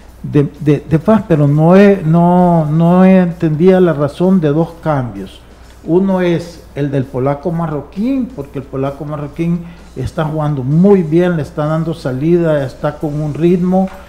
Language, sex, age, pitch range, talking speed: Spanish, male, 50-69, 145-180 Hz, 160 wpm